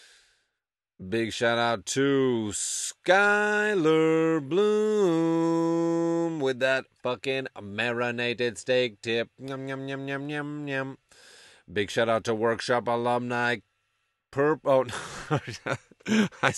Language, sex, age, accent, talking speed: English, male, 30-49, American, 95 wpm